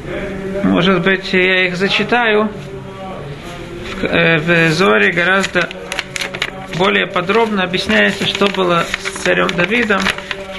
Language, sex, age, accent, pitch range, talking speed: Russian, male, 40-59, native, 170-210 Hz, 95 wpm